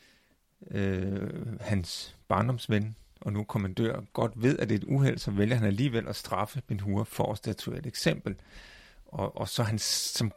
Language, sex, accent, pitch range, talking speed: Danish, male, native, 100-120 Hz, 175 wpm